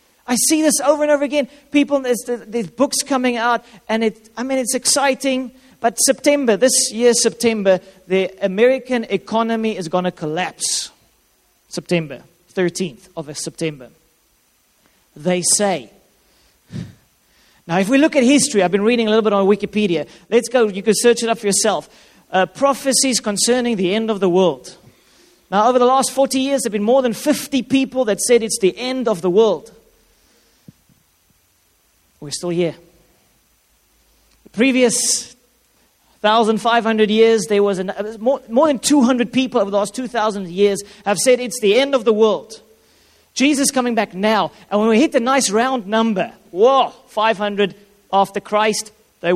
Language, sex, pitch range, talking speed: English, male, 195-255 Hz, 165 wpm